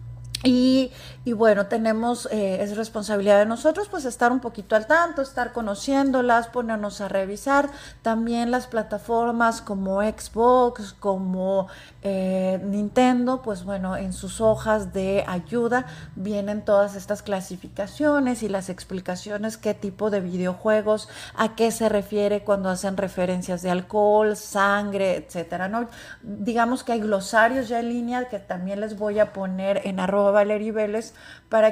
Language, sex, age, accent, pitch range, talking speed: Spanish, female, 40-59, Mexican, 200-235 Hz, 140 wpm